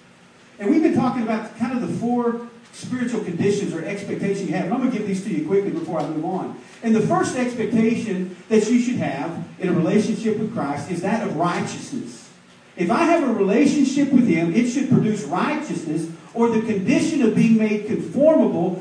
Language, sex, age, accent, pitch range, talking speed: English, male, 40-59, American, 185-235 Hz, 200 wpm